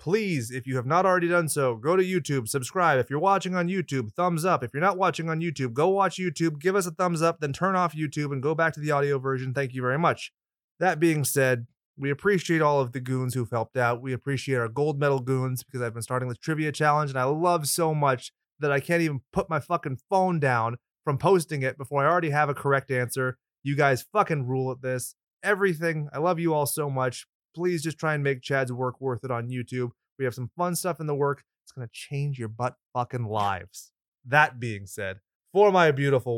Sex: male